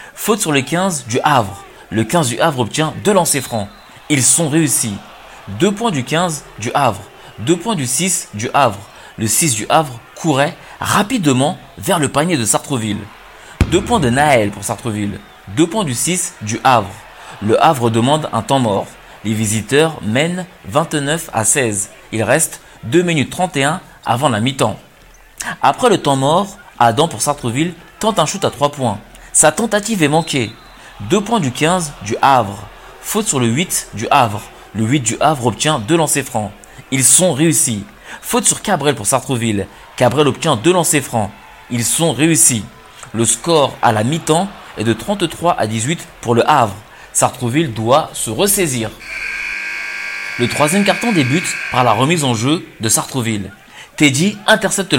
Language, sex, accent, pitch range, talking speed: French, male, French, 115-165 Hz, 170 wpm